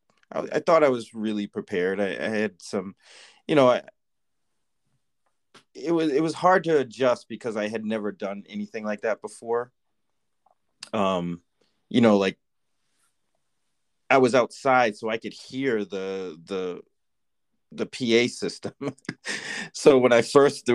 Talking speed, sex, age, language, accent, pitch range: 140 wpm, male, 30-49, English, American, 100-120 Hz